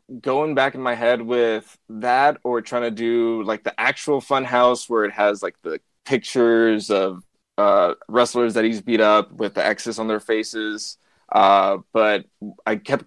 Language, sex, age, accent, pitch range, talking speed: English, male, 20-39, American, 110-130 Hz, 180 wpm